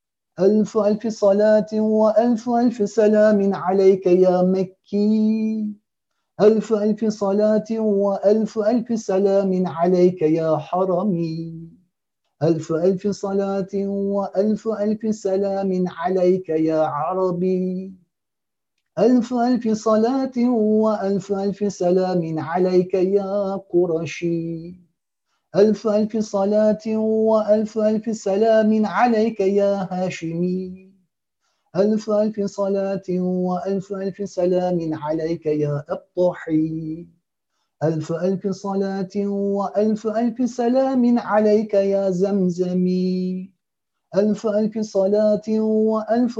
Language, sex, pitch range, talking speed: Turkish, male, 180-215 Hz, 85 wpm